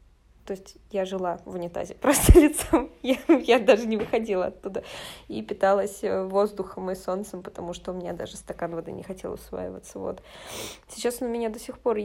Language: Russian